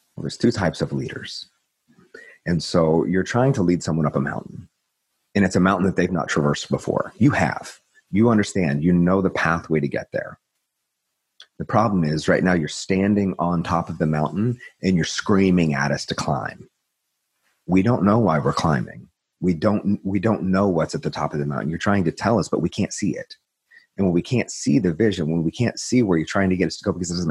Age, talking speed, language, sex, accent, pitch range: 30-49, 230 wpm, English, male, American, 80-100 Hz